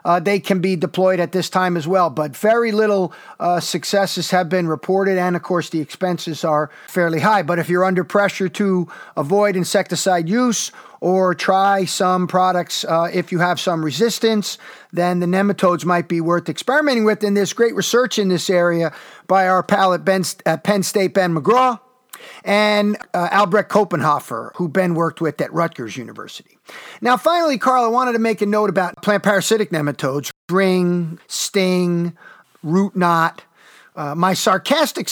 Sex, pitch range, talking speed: male, 170-205 Hz, 170 wpm